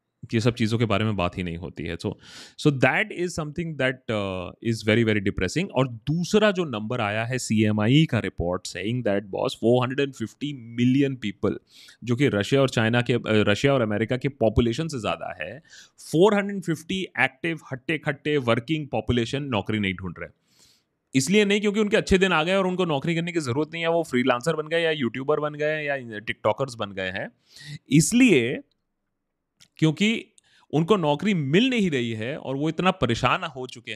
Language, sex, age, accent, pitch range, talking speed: Hindi, male, 30-49, native, 105-150 Hz, 185 wpm